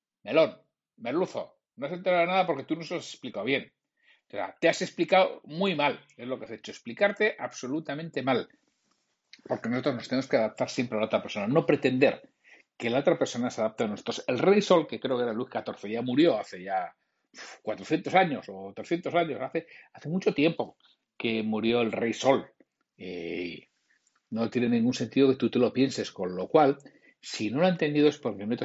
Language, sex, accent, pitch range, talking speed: Spanish, male, Spanish, 115-175 Hz, 210 wpm